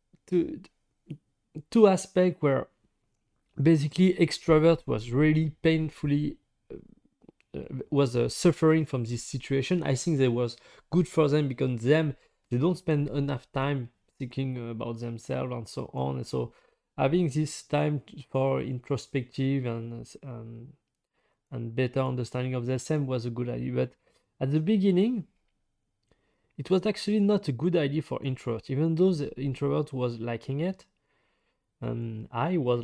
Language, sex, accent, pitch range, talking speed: English, male, French, 125-165 Hz, 145 wpm